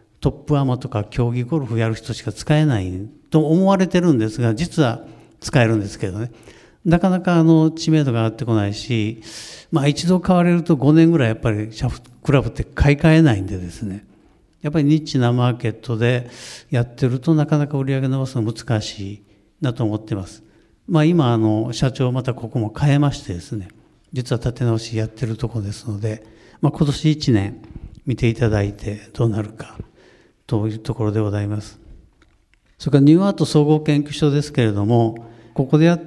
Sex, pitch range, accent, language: male, 110-150 Hz, native, Japanese